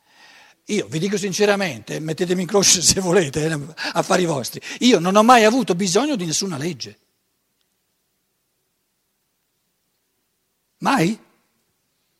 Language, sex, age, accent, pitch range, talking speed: Italian, male, 60-79, native, 150-205 Hz, 110 wpm